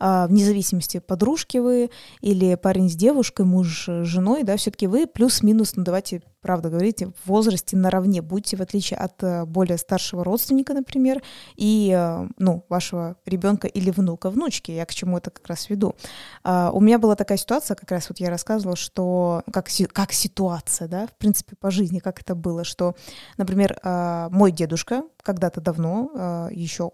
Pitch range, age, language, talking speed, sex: 180-210 Hz, 20-39, Russian, 165 wpm, female